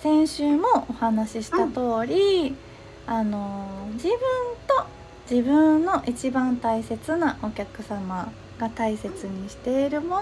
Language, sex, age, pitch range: Japanese, female, 20-39, 220-335 Hz